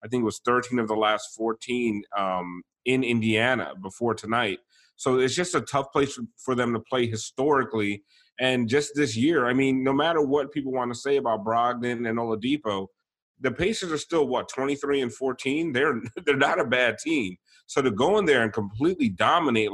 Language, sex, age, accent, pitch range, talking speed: English, male, 30-49, American, 110-135 Hz, 200 wpm